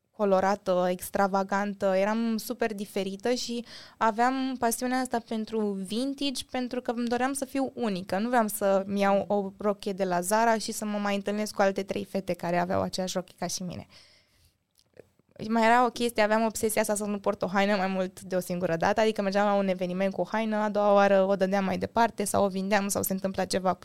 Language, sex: Romanian, female